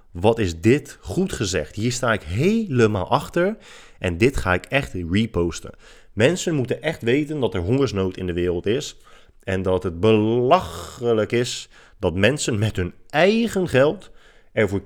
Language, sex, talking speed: Dutch, male, 160 wpm